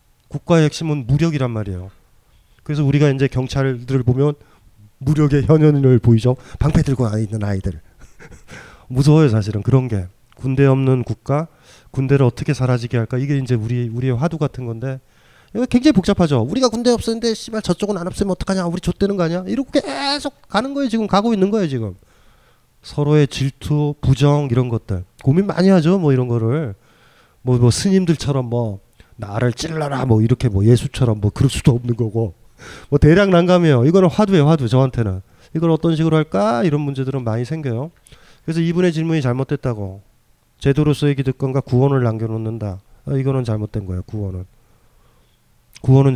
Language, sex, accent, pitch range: Korean, male, native, 115-155 Hz